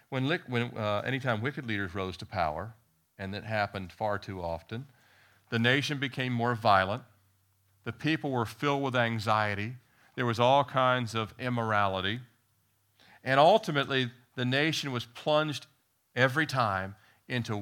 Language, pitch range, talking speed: English, 95-125 Hz, 135 wpm